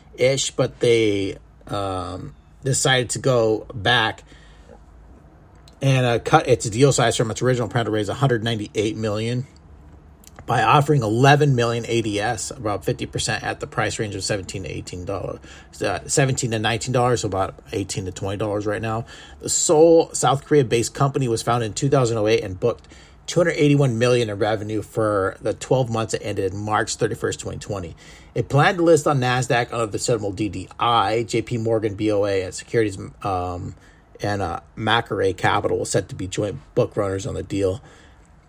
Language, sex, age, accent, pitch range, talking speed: English, male, 30-49, American, 95-135 Hz, 165 wpm